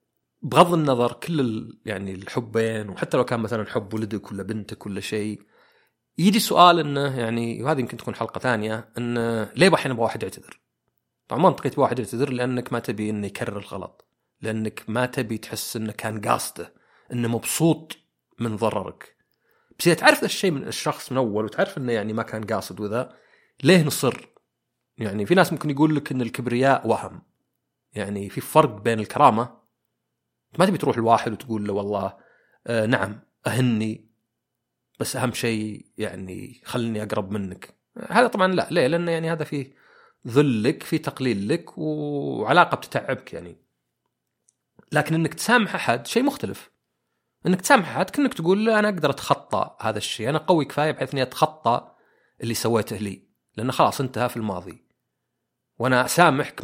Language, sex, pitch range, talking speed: Arabic, male, 110-150 Hz, 155 wpm